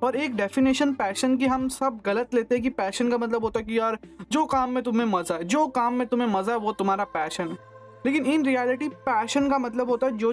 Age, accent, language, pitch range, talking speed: 20-39, native, Hindi, 215-270 Hz, 250 wpm